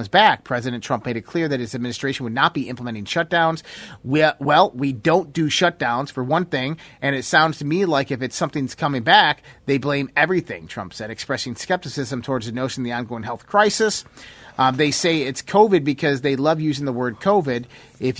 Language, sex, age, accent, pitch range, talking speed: English, male, 30-49, American, 130-160 Hz, 200 wpm